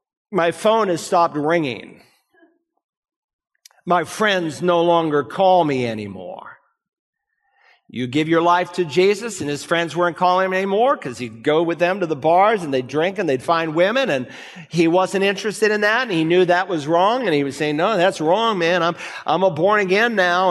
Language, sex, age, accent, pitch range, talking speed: English, male, 50-69, American, 160-195 Hz, 195 wpm